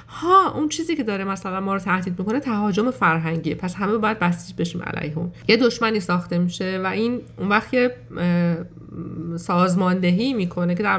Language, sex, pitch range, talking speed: English, female, 170-210 Hz, 170 wpm